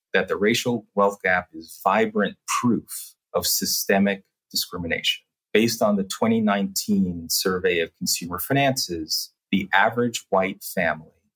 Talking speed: 120 wpm